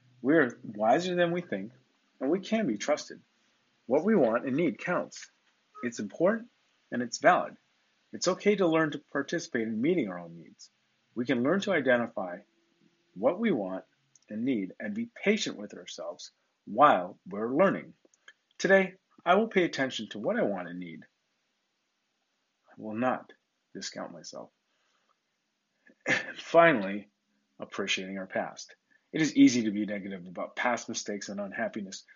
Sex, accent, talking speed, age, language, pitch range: male, American, 150 wpm, 40-59, English, 100-155 Hz